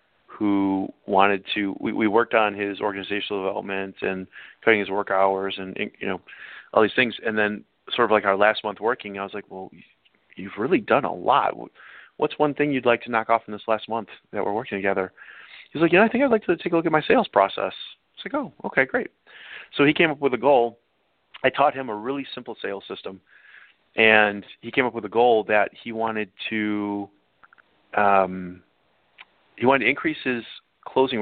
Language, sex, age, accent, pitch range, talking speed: English, male, 30-49, American, 100-120 Hz, 215 wpm